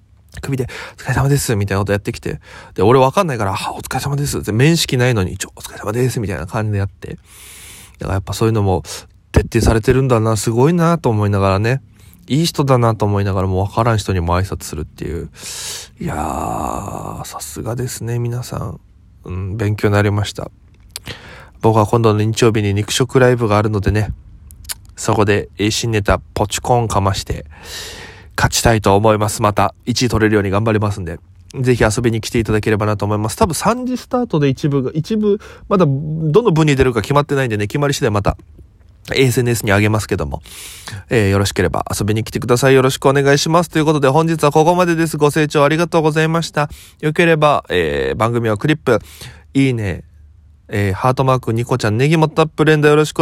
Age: 20-39